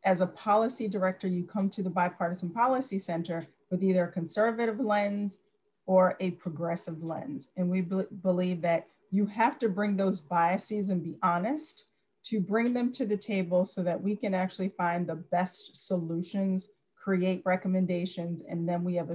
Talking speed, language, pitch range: 170 wpm, English, 170-200 Hz